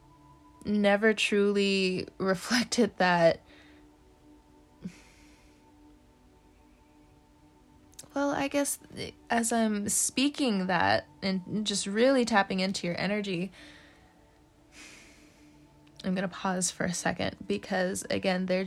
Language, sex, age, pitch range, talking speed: English, female, 20-39, 175-235 Hz, 85 wpm